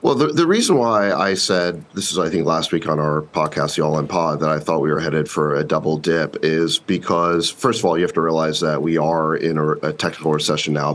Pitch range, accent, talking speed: 75-90 Hz, American, 250 wpm